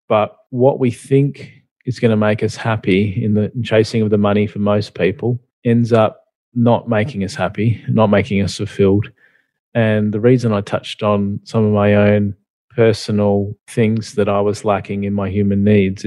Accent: Australian